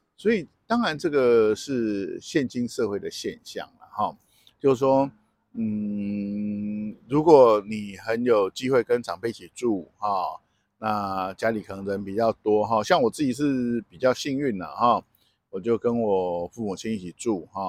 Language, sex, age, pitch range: Chinese, male, 50-69, 100-135 Hz